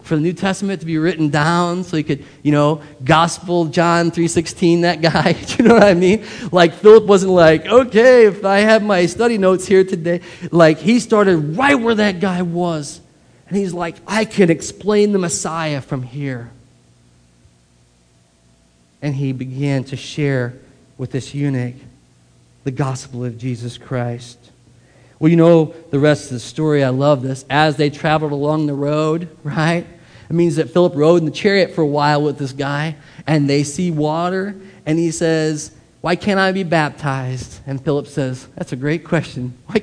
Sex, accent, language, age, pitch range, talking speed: male, American, English, 40-59, 135-190 Hz, 180 wpm